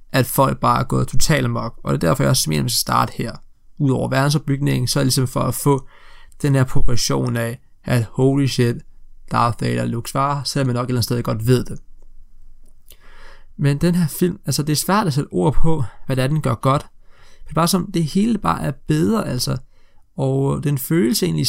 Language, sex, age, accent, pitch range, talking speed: Danish, male, 20-39, native, 125-150 Hz, 230 wpm